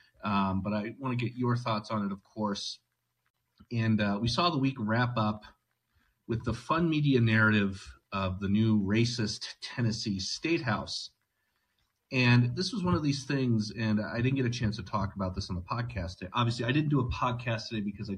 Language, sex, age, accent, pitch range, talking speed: English, male, 30-49, American, 100-125 Hz, 200 wpm